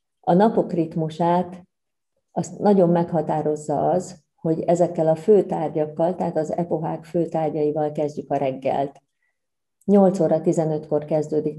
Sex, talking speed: female, 115 wpm